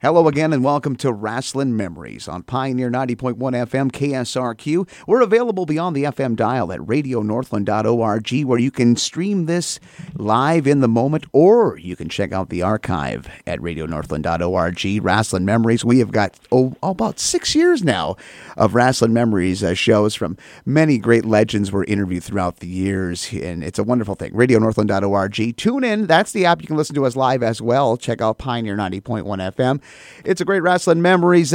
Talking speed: 175 wpm